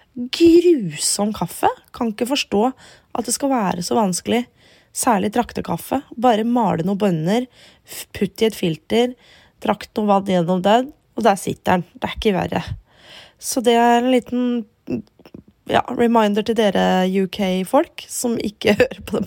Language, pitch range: English, 195-250 Hz